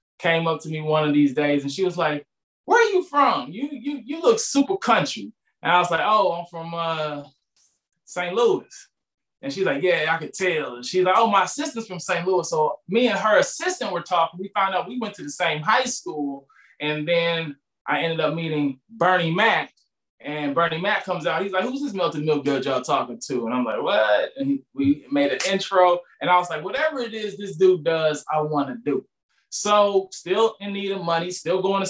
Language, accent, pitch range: English, American, 150-200 Hz